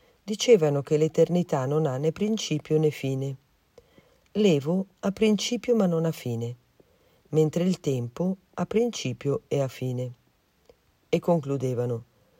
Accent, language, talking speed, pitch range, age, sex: native, Italian, 125 wpm, 135-195 Hz, 50-69, female